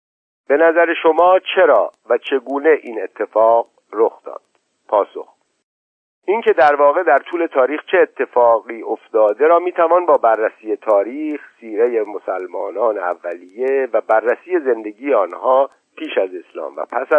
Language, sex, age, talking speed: Persian, male, 50-69, 130 wpm